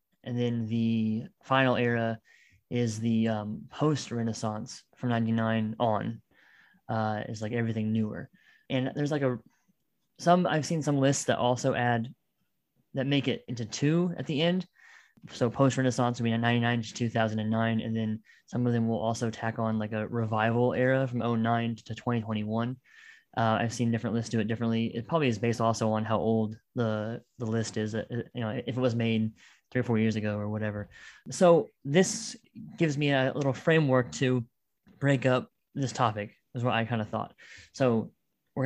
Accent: American